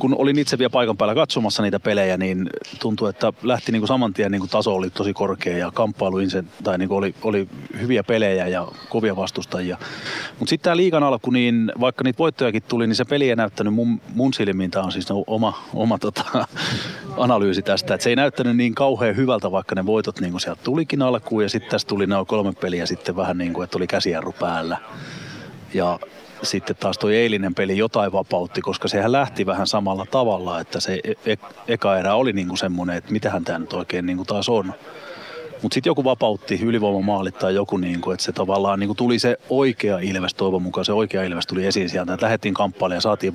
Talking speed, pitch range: 190 wpm, 95-120 Hz